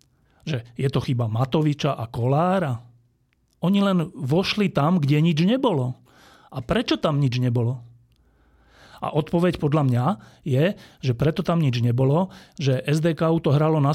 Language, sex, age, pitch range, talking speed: Slovak, male, 40-59, 130-175 Hz, 145 wpm